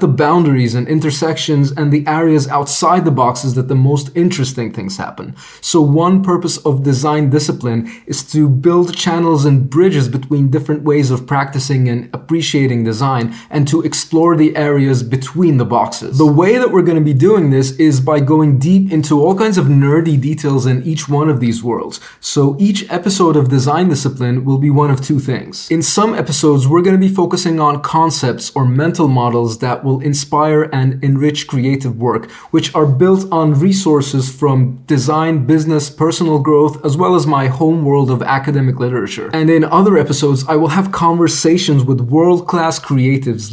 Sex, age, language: male, 30-49, English